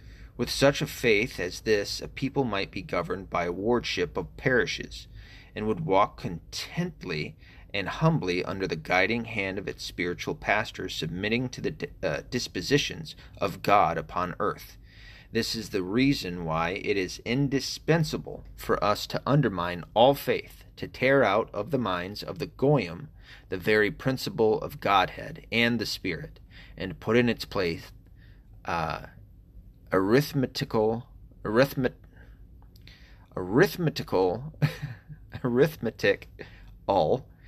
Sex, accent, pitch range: male, American, 95-120 Hz